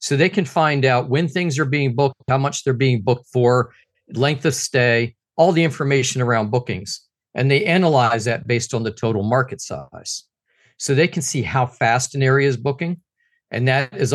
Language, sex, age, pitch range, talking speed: English, male, 50-69, 120-145 Hz, 200 wpm